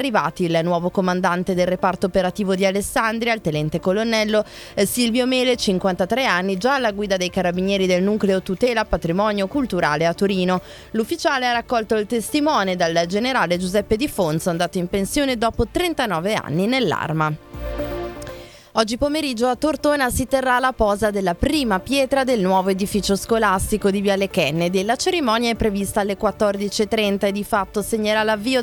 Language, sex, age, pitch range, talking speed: Italian, female, 20-39, 185-235 Hz, 155 wpm